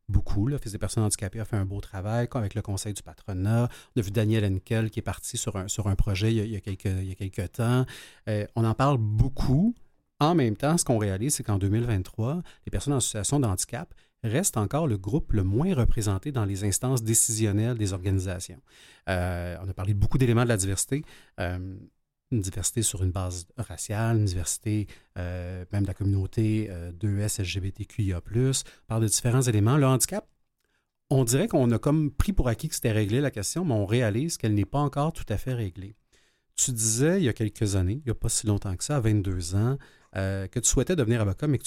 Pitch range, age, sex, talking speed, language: 100-125 Hz, 30-49, male, 220 wpm, French